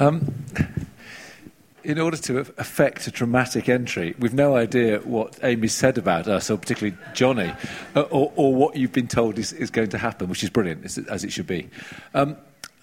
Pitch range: 100-130 Hz